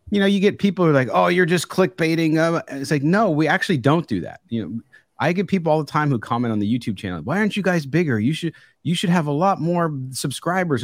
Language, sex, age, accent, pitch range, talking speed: English, male, 40-59, American, 115-165 Hz, 275 wpm